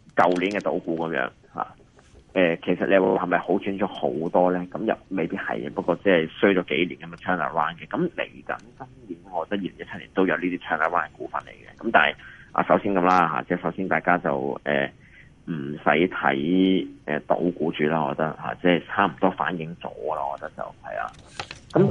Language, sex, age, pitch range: Chinese, male, 30-49, 80-95 Hz